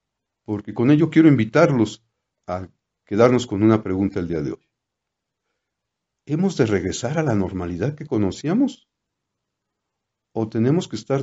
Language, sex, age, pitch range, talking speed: Spanish, male, 50-69, 95-120 Hz, 140 wpm